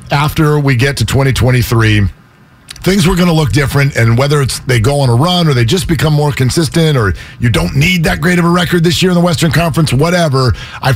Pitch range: 115-150 Hz